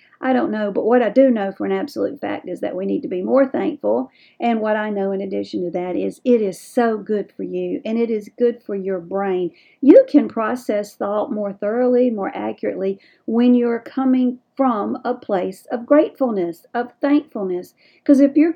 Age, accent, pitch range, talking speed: 50-69, American, 195-265 Hz, 205 wpm